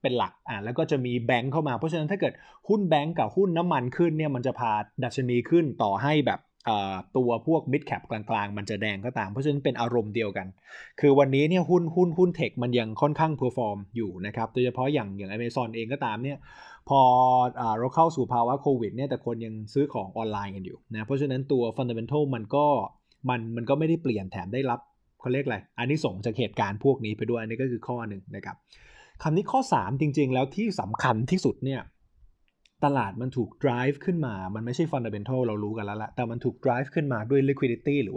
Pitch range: 115-150 Hz